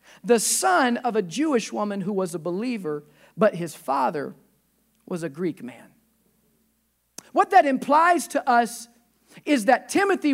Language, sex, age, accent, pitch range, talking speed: English, male, 40-59, American, 230-290 Hz, 145 wpm